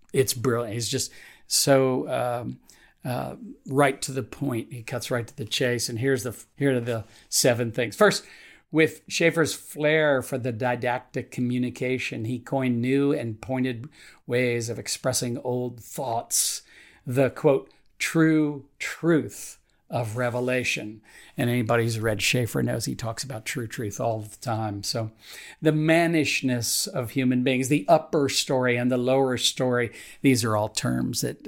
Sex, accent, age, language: male, American, 50-69, English